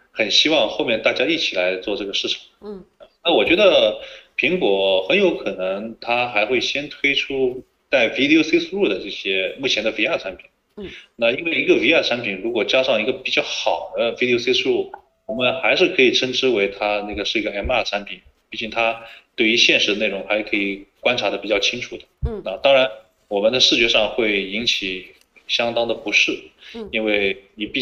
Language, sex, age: Chinese, male, 20-39